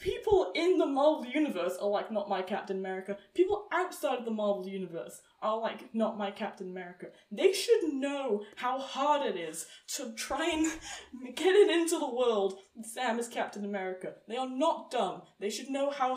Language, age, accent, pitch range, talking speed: English, 10-29, British, 235-360 Hz, 185 wpm